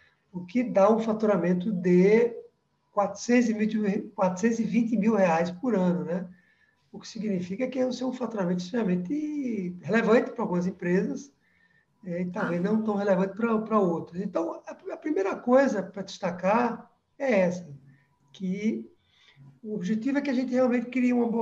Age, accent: 60-79, Brazilian